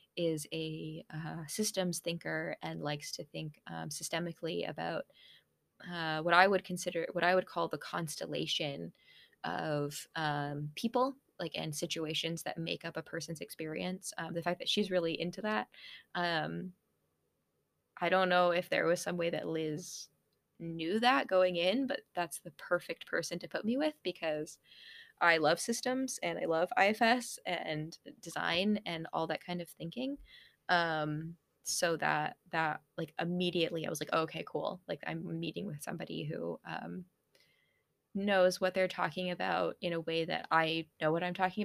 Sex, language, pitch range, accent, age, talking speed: female, English, 160-190 Hz, American, 20-39, 165 wpm